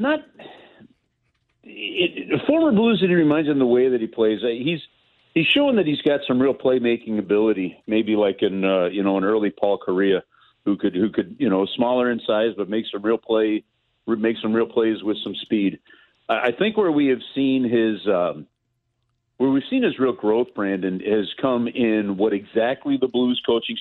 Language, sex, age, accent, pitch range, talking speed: English, male, 50-69, American, 100-125 Hz, 195 wpm